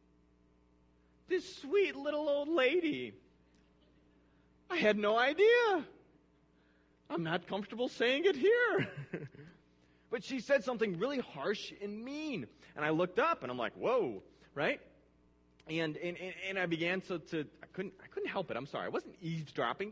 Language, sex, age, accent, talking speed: English, male, 30-49, American, 155 wpm